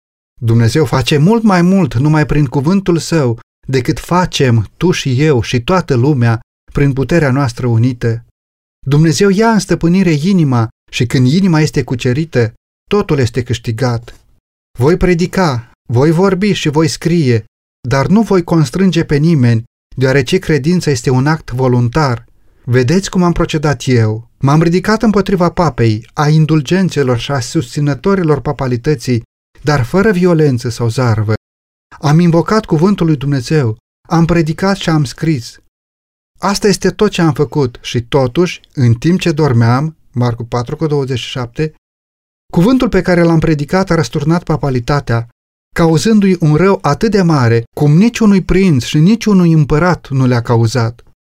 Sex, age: male, 30-49